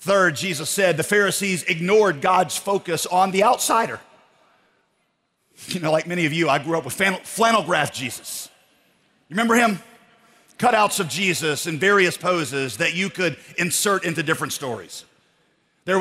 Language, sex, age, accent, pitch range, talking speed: English, male, 40-59, American, 175-205 Hz, 150 wpm